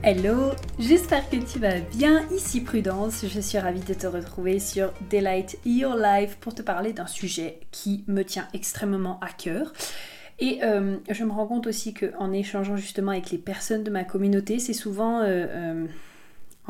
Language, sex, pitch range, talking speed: French, female, 190-225 Hz, 175 wpm